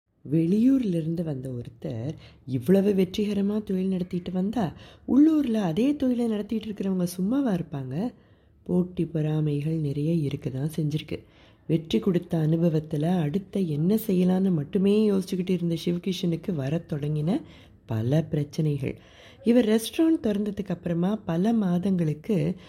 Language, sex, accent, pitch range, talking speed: Tamil, female, native, 150-195 Hz, 100 wpm